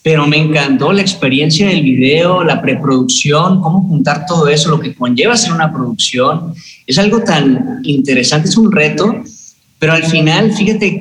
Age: 30-49